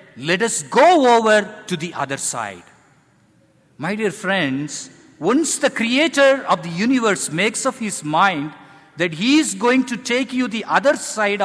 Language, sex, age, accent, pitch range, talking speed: English, male, 50-69, Indian, 145-220 Hz, 160 wpm